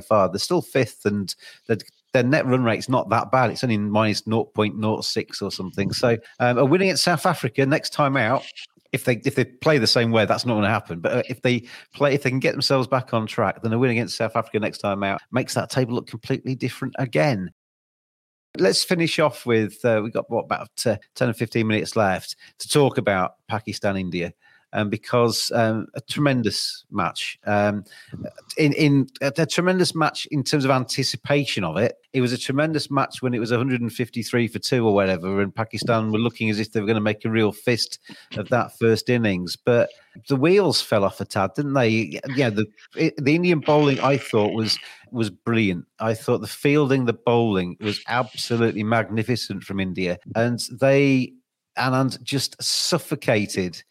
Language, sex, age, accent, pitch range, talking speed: English, male, 40-59, British, 110-135 Hz, 200 wpm